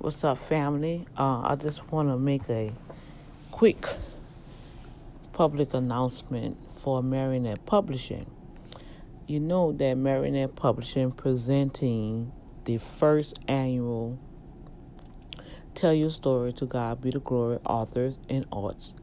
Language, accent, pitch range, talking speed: English, American, 130-160 Hz, 115 wpm